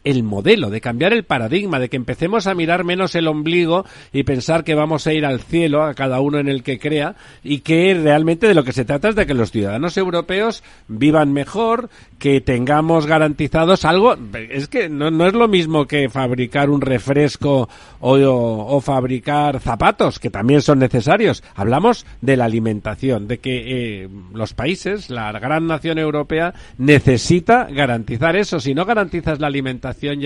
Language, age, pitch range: Spanish, 50-69, 125-160 Hz